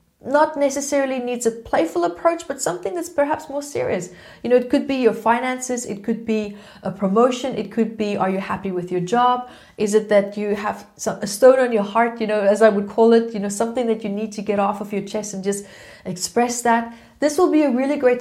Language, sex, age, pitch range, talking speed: English, female, 30-49, 210-265 Hz, 240 wpm